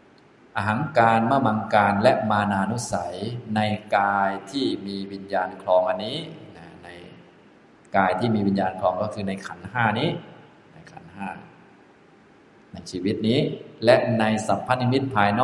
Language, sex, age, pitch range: Thai, male, 20-39, 100-120 Hz